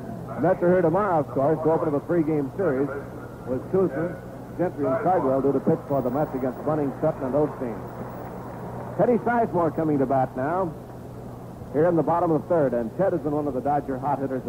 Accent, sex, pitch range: American, male, 120-155 Hz